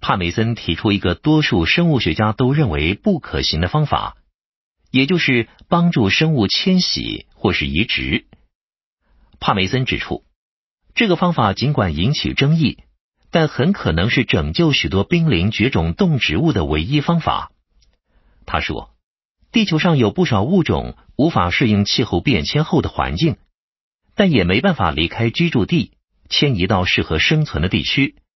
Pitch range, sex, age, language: 90-150 Hz, male, 50-69, Vietnamese